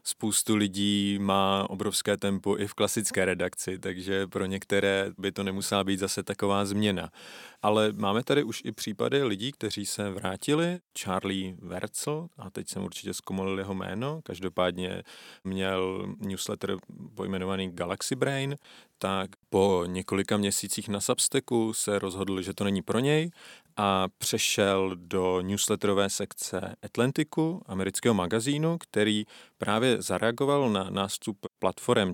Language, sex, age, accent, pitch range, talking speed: Czech, male, 30-49, native, 95-110 Hz, 135 wpm